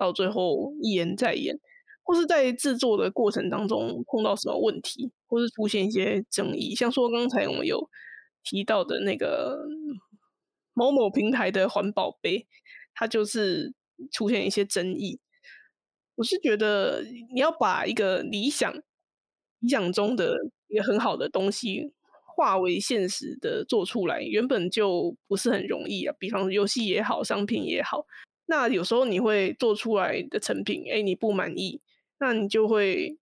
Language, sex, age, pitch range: Chinese, female, 20-39, 200-275 Hz